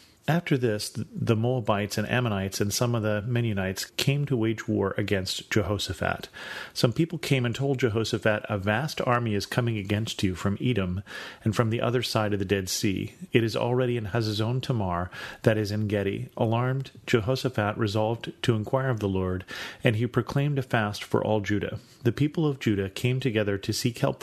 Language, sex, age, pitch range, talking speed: English, male, 40-59, 100-125 Hz, 190 wpm